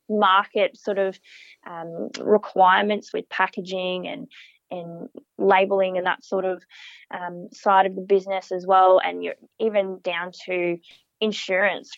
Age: 20-39